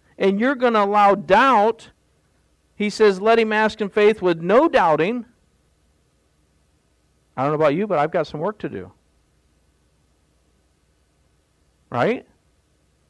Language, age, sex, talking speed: English, 50-69, male, 135 wpm